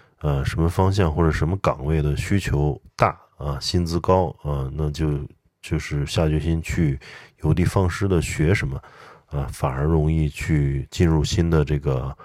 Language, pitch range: Chinese, 75-90 Hz